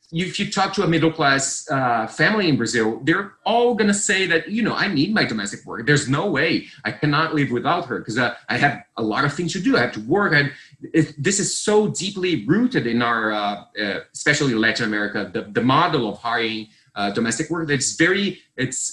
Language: English